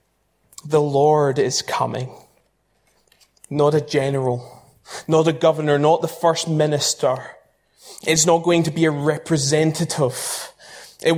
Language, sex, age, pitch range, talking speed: English, male, 20-39, 135-160 Hz, 120 wpm